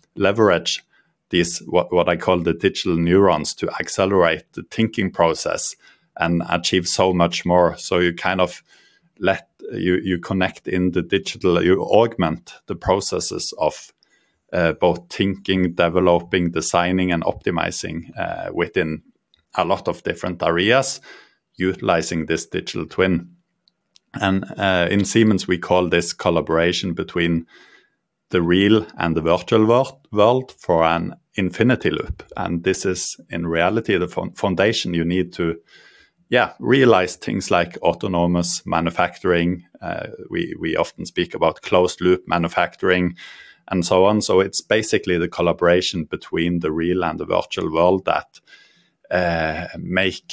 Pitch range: 85-95 Hz